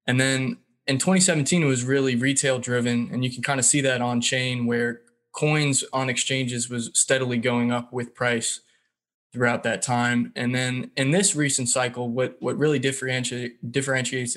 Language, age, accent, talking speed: English, 20-39, American, 165 wpm